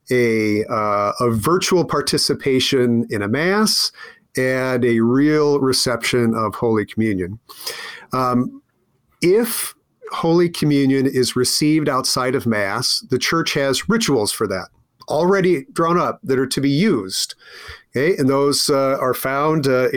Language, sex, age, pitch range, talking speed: English, male, 40-59, 120-150 Hz, 135 wpm